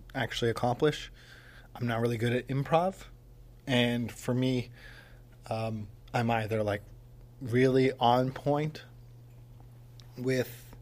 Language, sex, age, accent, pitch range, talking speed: English, male, 20-39, American, 115-125 Hz, 105 wpm